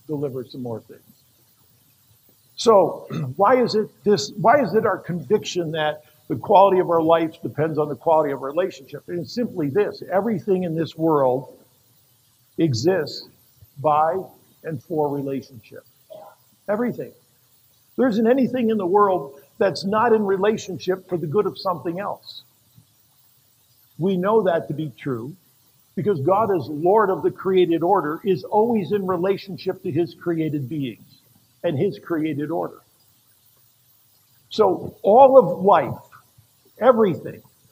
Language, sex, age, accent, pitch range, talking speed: English, male, 50-69, American, 130-195 Hz, 140 wpm